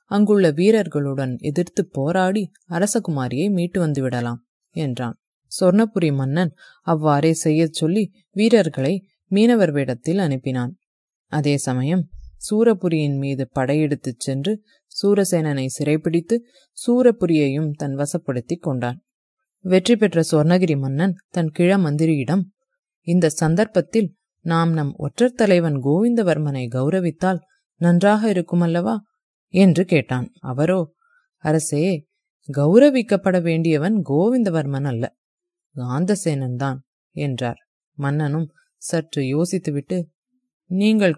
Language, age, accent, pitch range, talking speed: English, 30-49, Indian, 145-195 Hz, 85 wpm